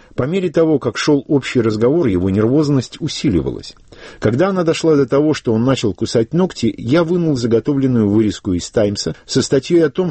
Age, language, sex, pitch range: 50-69, Russian, male, 100-150 Hz